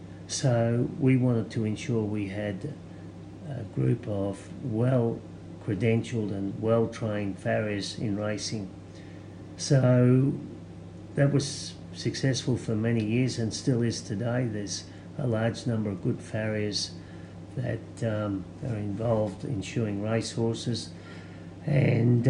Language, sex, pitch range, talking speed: English, male, 95-120 Hz, 115 wpm